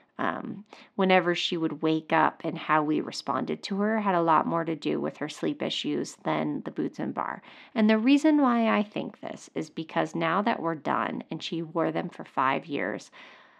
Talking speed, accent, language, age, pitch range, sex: 210 wpm, American, English, 30-49, 170-215 Hz, female